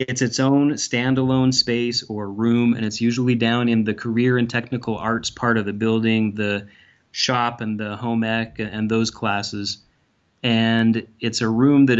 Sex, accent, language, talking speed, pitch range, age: male, American, English, 175 wpm, 110-125 Hz, 30-49